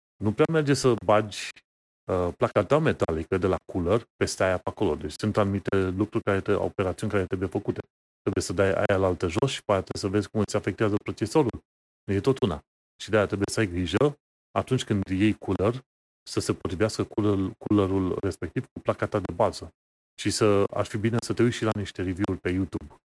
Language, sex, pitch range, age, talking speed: Romanian, male, 95-115 Hz, 30-49, 200 wpm